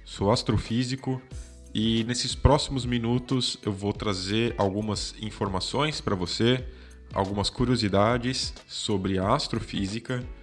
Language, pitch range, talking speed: Portuguese, 95-125 Hz, 105 wpm